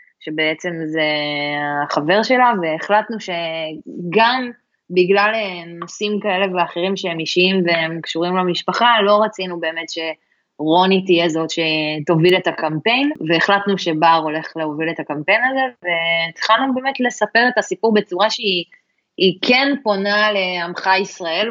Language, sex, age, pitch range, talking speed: Hebrew, female, 20-39, 165-210 Hz, 115 wpm